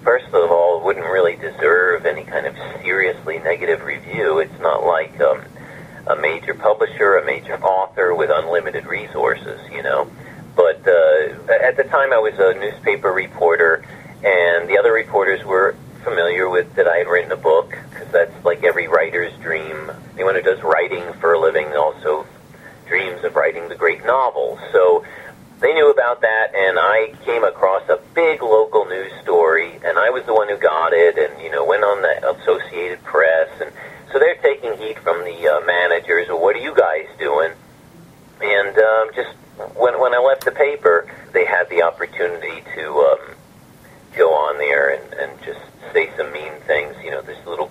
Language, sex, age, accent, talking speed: English, male, 40-59, American, 180 wpm